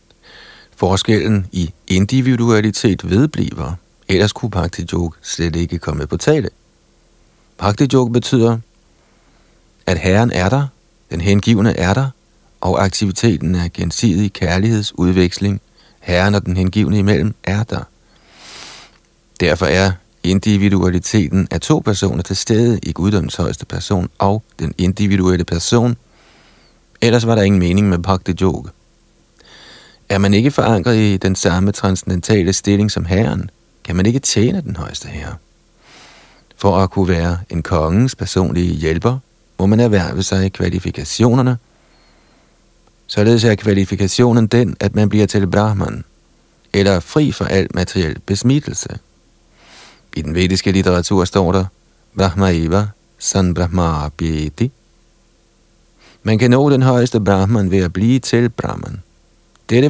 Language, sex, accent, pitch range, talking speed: Danish, male, native, 85-105 Hz, 120 wpm